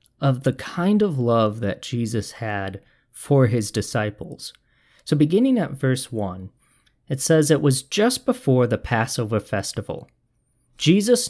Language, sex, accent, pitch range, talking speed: English, male, American, 115-155 Hz, 140 wpm